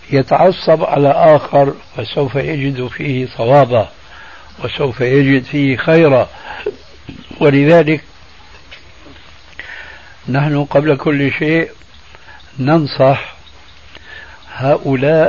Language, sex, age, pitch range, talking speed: Arabic, male, 60-79, 125-145 Hz, 75 wpm